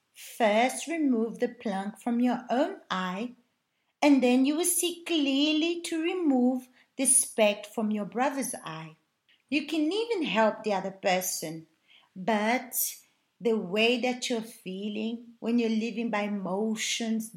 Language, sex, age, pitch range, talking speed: Portuguese, female, 40-59, 210-260 Hz, 140 wpm